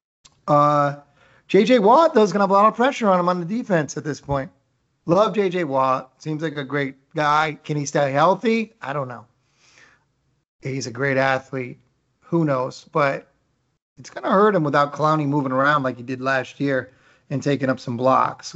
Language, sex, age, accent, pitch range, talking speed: English, male, 30-49, American, 130-170 Hz, 195 wpm